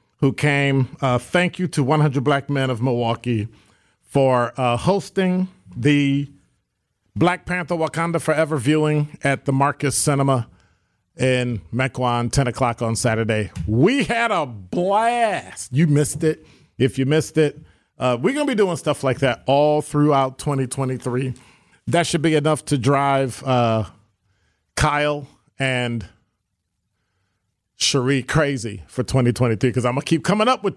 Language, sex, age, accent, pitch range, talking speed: English, male, 40-59, American, 110-150 Hz, 140 wpm